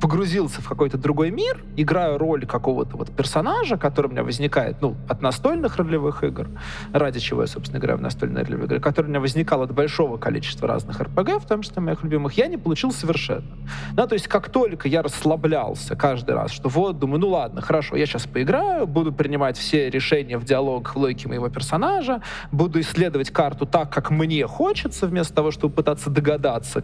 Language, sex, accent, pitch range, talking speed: Russian, male, native, 130-165 Hz, 190 wpm